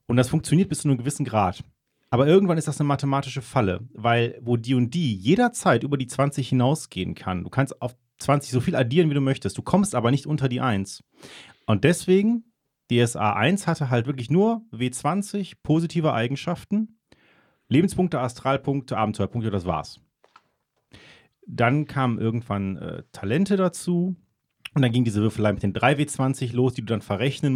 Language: German